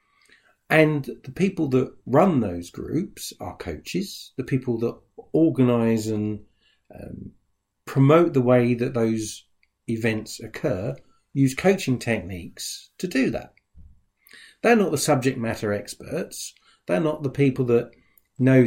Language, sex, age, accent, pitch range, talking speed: English, male, 50-69, British, 105-155 Hz, 130 wpm